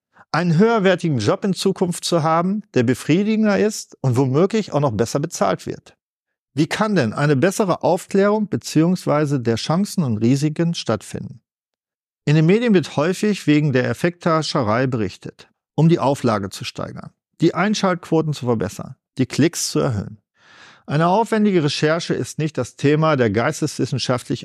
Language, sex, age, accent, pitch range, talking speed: German, male, 50-69, German, 125-185 Hz, 145 wpm